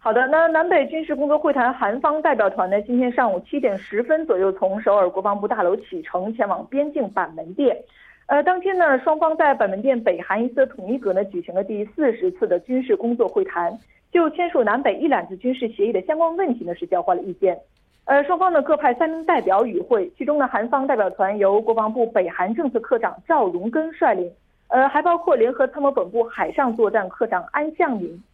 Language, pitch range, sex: Korean, 200-310 Hz, female